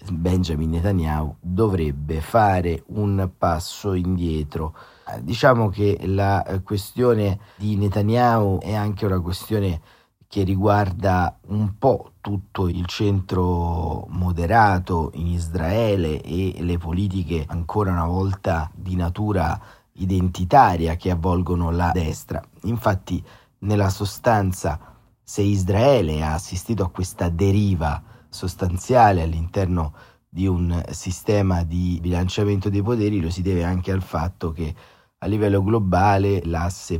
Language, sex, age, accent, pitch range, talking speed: Italian, male, 30-49, native, 85-105 Hz, 115 wpm